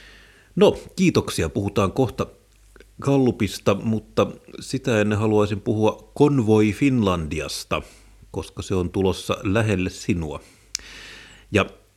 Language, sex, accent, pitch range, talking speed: Finnish, male, native, 90-110 Hz, 95 wpm